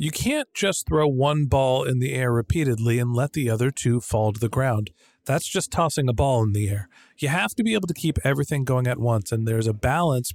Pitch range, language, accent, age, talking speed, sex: 125-175 Hz, English, American, 40-59, 245 wpm, male